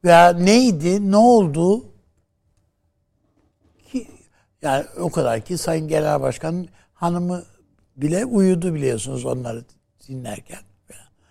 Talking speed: 95 wpm